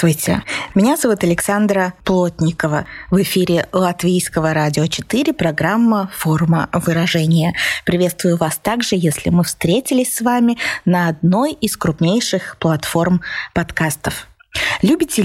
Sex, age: female, 20-39